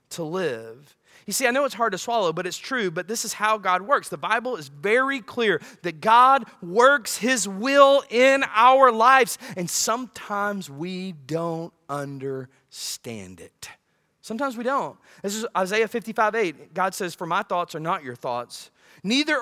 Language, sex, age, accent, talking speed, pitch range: English, male, 30-49, American, 175 wpm, 185-275 Hz